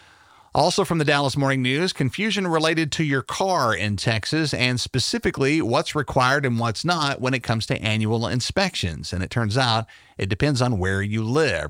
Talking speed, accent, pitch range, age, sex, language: 185 wpm, American, 105-140 Hz, 40-59, male, English